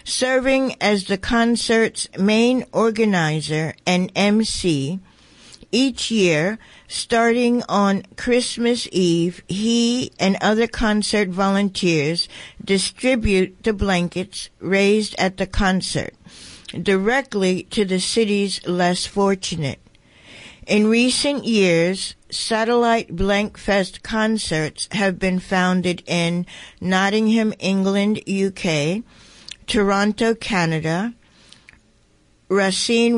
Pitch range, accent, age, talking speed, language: 180-215 Hz, American, 60-79, 85 wpm, English